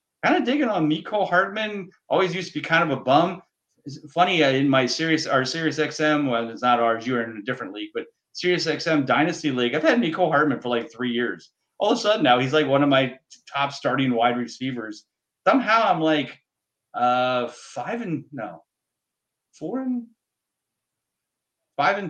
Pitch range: 120-155 Hz